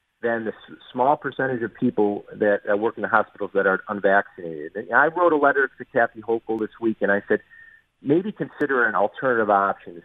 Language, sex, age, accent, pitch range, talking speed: English, male, 40-59, American, 100-125 Hz, 190 wpm